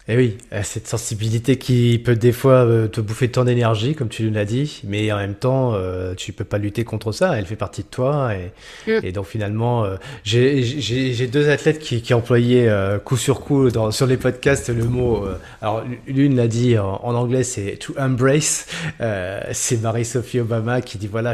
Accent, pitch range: French, 110-130 Hz